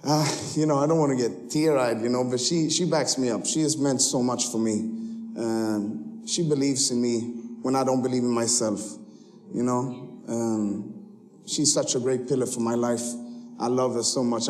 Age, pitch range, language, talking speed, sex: 30-49, 125-165 Hz, English, 215 wpm, male